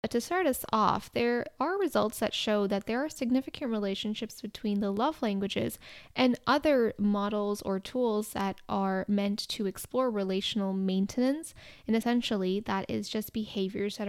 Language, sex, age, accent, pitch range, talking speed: English, female, 10-29, American, 200-250 Hz, 160 wpm